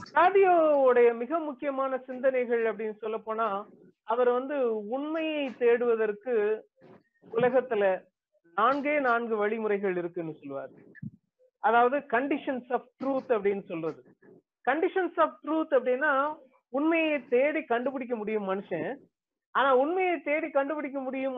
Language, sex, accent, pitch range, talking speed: Tamil, female, native, 220-295 Hz, 70 wpm